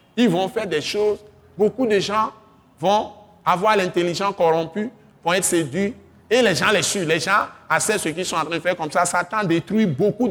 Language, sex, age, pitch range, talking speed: French, male, 50-69, 190-245 Hz, 205 wpm